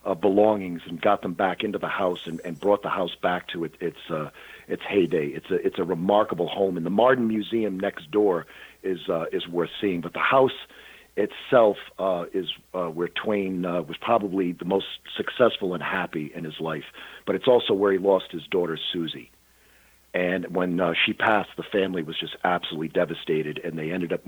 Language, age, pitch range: English, 50-69, 85-115 Hz